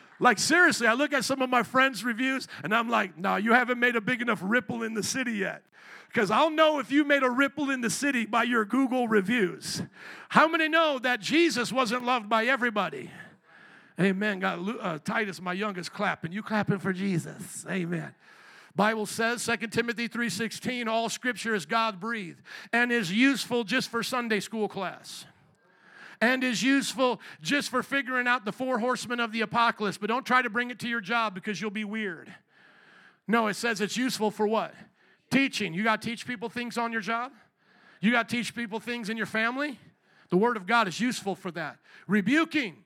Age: 50-69